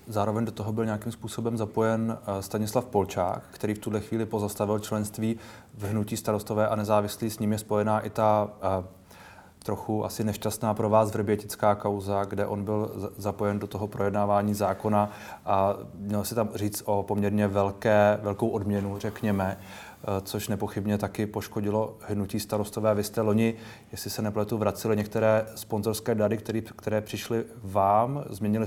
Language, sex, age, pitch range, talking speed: Czech, male, 30-49, 105-115 Hz, 155 wpm